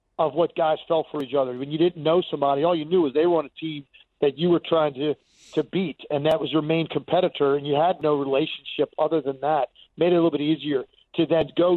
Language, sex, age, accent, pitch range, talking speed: English, male, 40-59, American, 155-190 Hz, 260 wpm